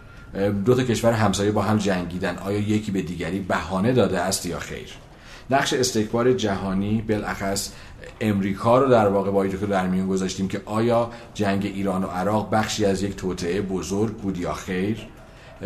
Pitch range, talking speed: 100-125 Hz, 160 wpm